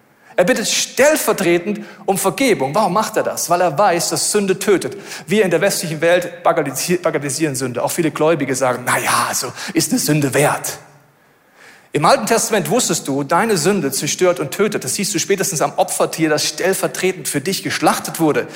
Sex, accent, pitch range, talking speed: male, German, 150-195 Hz, 180 wpm